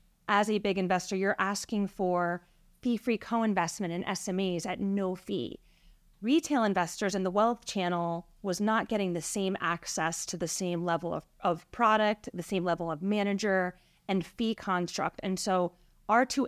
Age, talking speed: 30-49, 170 wpm